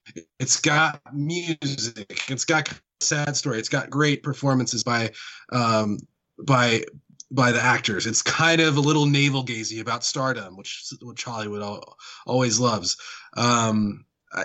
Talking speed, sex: 145 wpm, male